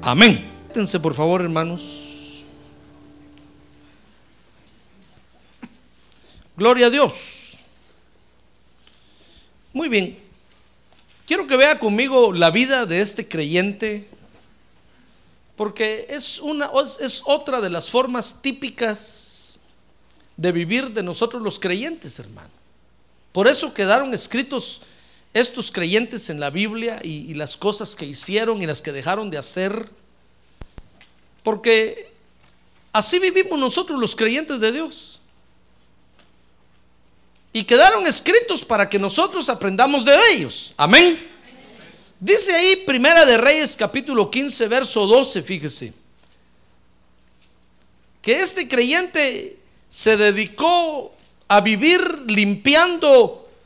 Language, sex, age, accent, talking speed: Spanish, male, 50-69, Mexican, 105 wpm